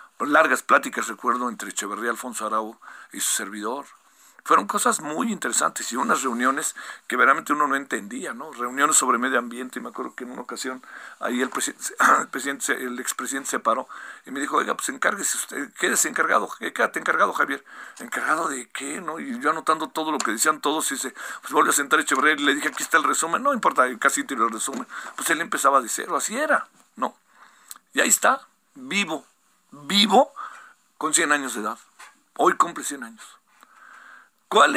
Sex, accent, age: male, Mexican, 50-69